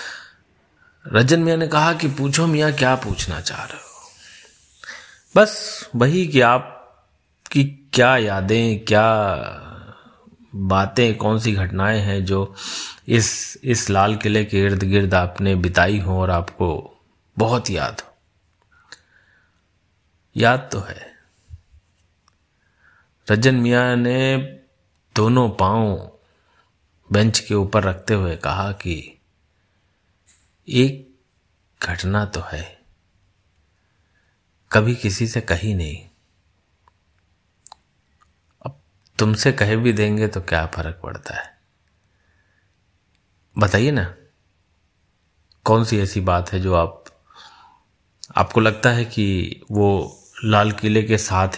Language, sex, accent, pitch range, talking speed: Hindi, male, native, 90-110 Hz, 110 wpm